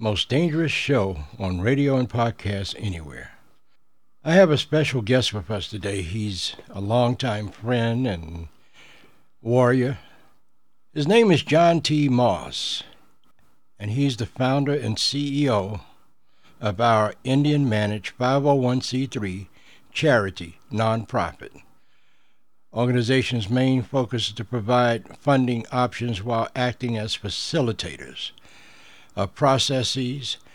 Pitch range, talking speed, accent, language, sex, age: 105-130 Hz, 110 wpm, American, English, male, 60-79